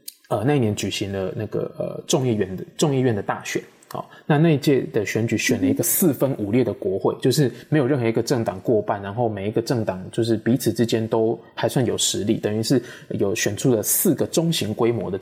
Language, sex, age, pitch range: Chinese, male, 20-39, 110-150 Hz